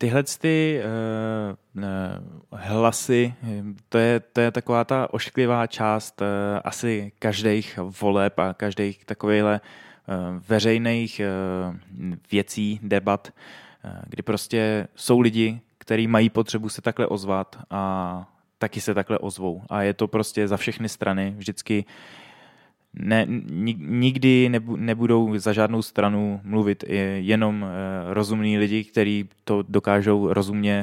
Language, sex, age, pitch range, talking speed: Czech, male, 20-39, 95-110 Hz, 125 wpm